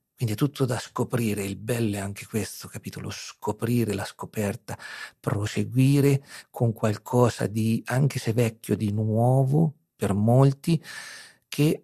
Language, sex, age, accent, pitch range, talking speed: Italian, male, 50-69, native, 105-125 Hz, 130 wpm